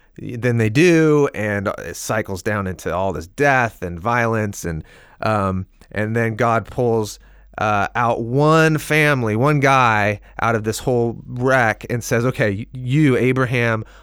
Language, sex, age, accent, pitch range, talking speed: English, male, 30-49, American, 105-130 Hz, 150 wpm